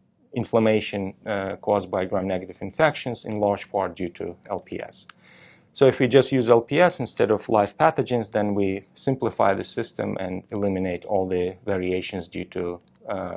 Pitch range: 95-120 Hz